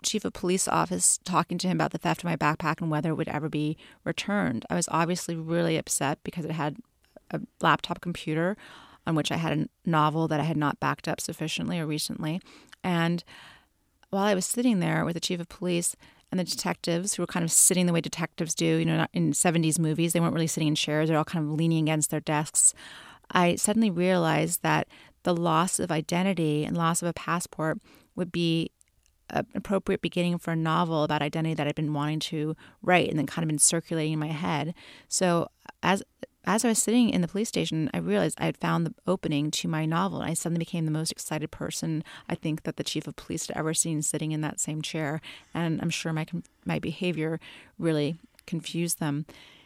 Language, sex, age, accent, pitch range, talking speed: English, female, 30-49, American, 155-180 Hz, 215 wpm